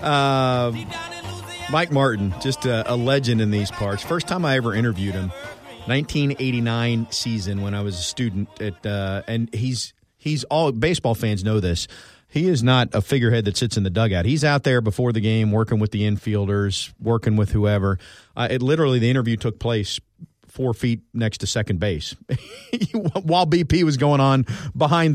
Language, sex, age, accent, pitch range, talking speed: English, male, 40-59, American, 105-130 Hz, 180 wpm